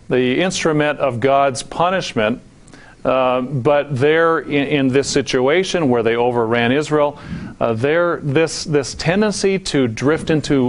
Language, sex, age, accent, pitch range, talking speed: English, male, 40-59, American, 130-165 Hz, 135 wpm